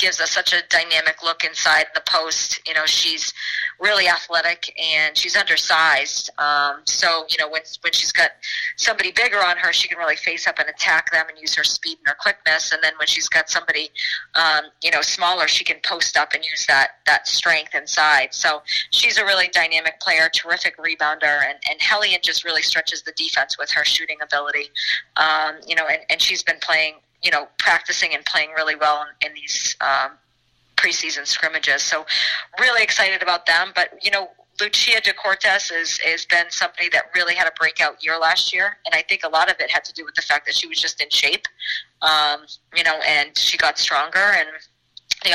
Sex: female